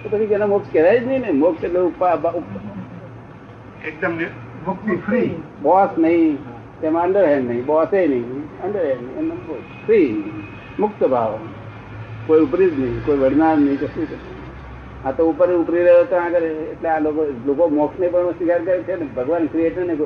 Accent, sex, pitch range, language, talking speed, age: native, male, 130-175 Hz, Gujarati, 40 wpm, 60-79